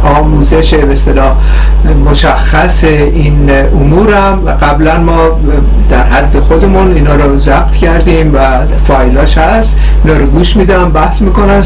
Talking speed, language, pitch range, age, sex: 120 wpm, Persian, 145-185 Hz, 50-69, male